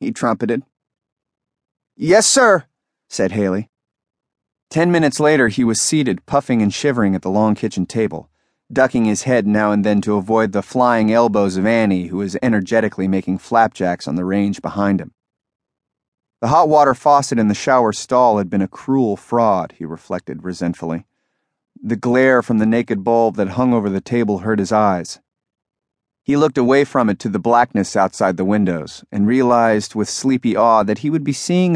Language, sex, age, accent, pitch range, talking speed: English, male, 30-49, American, 100-135 Hz, 180 wpm